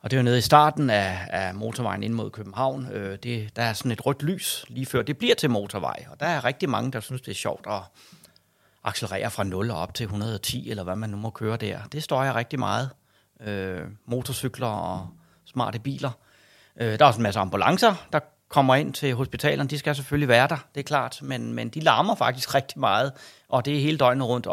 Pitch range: 105-135 Hz